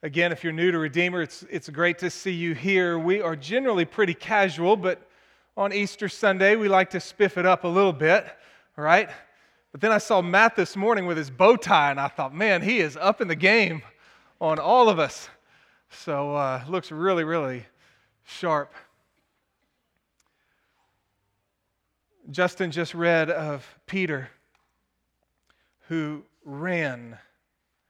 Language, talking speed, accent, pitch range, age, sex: English, 155 wpm, American, 140-185 Hz, 30-49, male